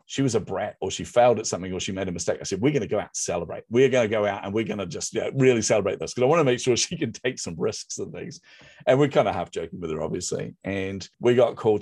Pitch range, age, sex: 85-105 Hz, 40-59, male